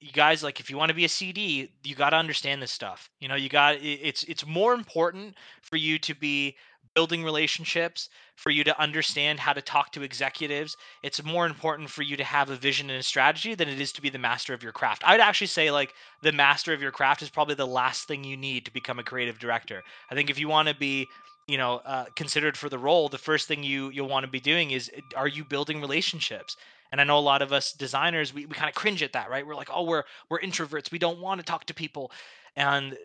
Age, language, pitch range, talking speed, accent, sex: 20-39, English, 140-160 Hz, 255 wpm, American, male